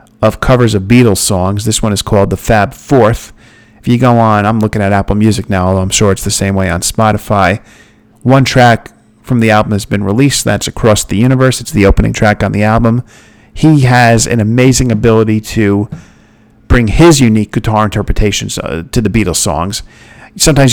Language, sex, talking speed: English, male, 195 wpm